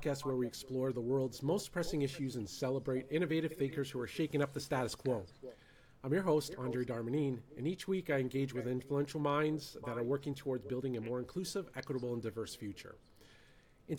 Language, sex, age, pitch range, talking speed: English, male, 40-59, 125-155 Hz, 195 wpm